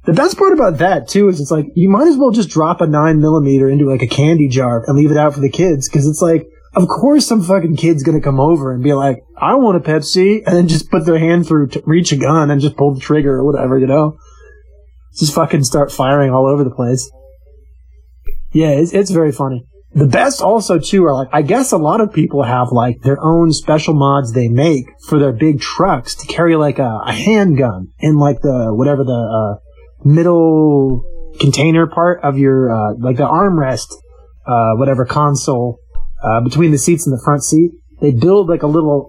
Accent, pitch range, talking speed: American, 135-170 Hz, 215 wpm